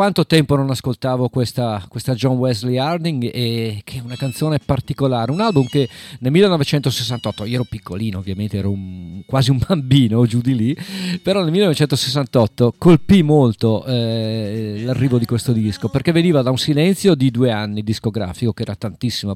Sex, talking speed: male, 160 wpm